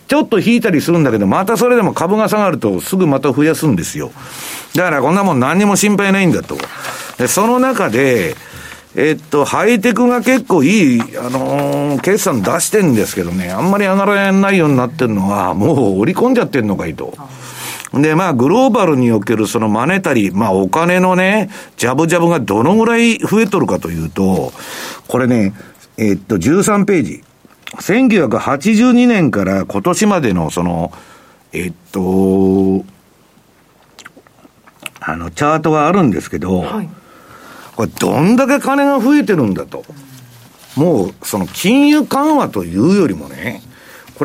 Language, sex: Japanese, male